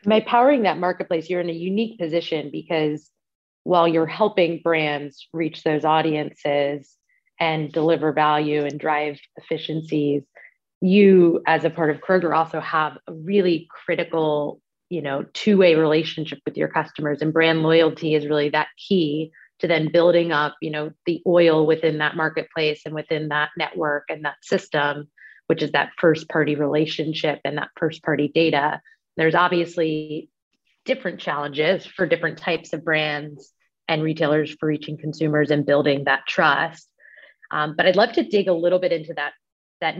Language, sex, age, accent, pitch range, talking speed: English, female, 30-49, American, 150-170 Hz, 160 wpm